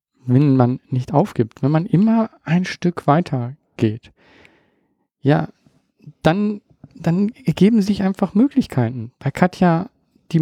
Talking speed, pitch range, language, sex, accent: 120 wpm, 125-170 Hz, German, male, German